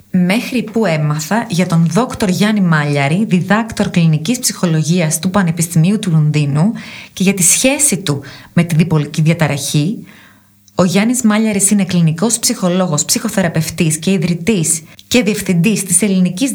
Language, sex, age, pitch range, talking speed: Greek, female, 20-39, 165-215 Hz, 135 wpm